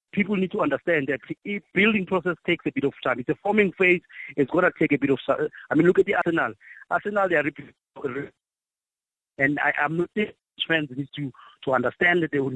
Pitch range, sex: 145-185 Hz, male